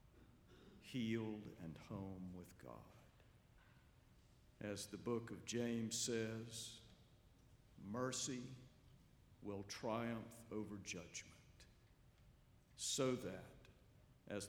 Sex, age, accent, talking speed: male, 60-79, American, 80 wpm